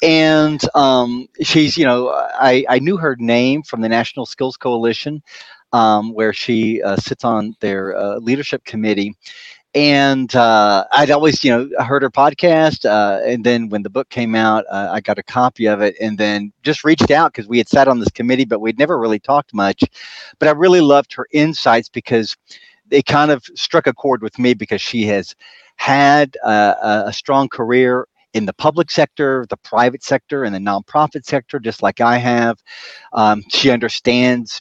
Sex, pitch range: male, 105-140 Hz